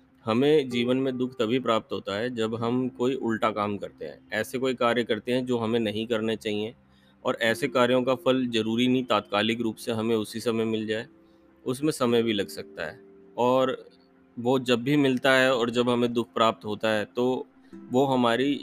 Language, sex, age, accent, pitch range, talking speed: Hindi, male, 30-49, native, 105-125 Hz, 200 wpm